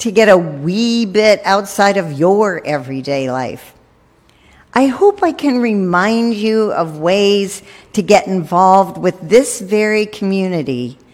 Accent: American